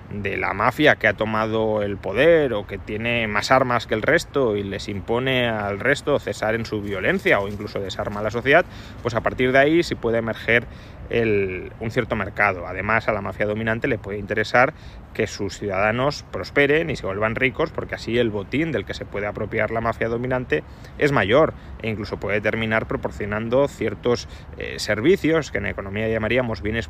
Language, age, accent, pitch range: Spanish, 30-49, Spanish, 105-135 Hz